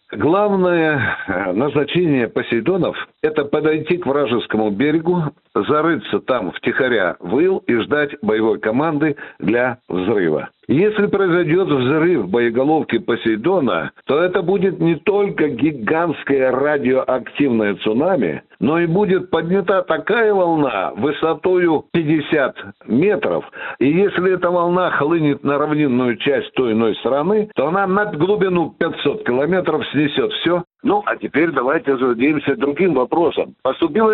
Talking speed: 125 wpm